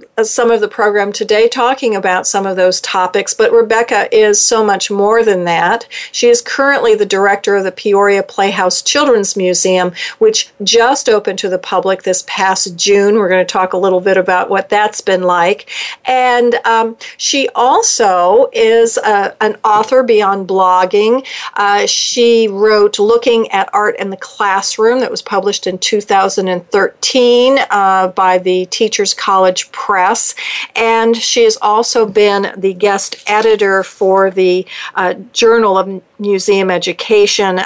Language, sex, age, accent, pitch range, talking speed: English, female, 50-69, American, 190-230 Hz, 150 wpm